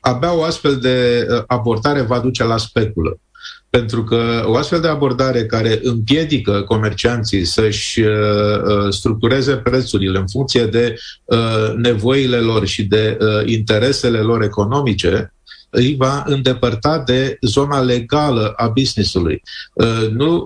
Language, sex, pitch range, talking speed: Romanian, male, 110-130 Hz, 115 wpm